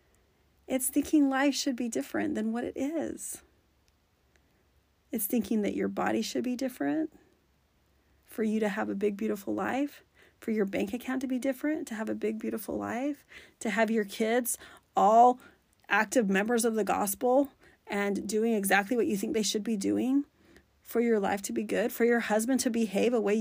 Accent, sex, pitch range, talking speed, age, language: American, female, 205-260 Hz, 185 wpm, 30-49, English